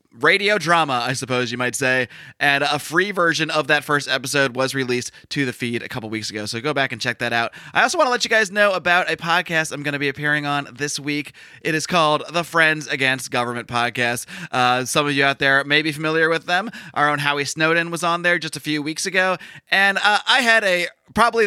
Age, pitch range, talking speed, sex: 20-39, 130-175 Hz, 245 wpm, male